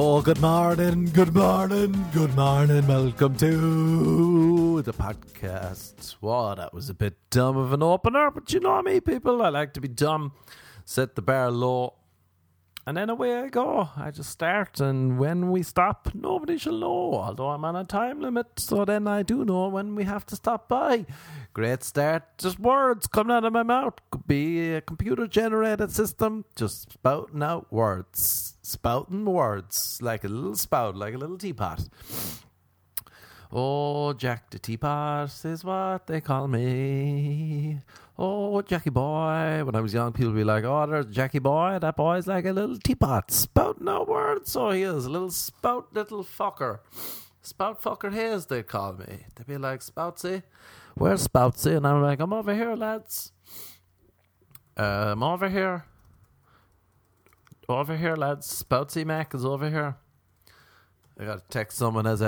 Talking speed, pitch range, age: 170 wpm, 115-185 Hz, 30-49